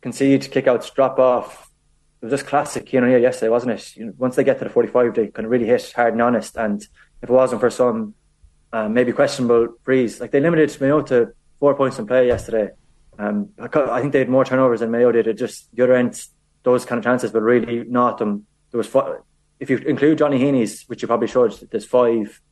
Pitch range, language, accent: 115-135 Hz, English, Irish